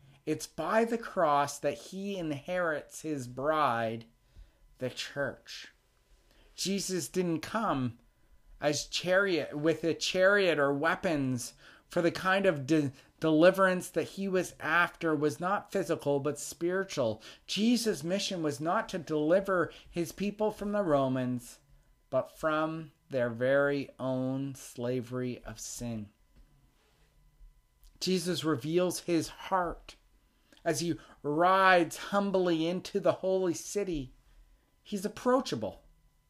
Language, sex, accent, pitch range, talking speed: English, male, American, 140-195 Hz, 115 wpm